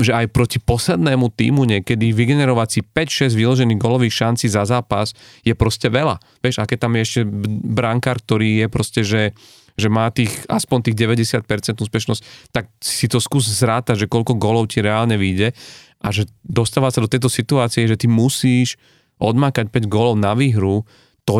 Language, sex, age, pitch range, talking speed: Slovak, male, 40-59, 105-125 Hz, 170 wpm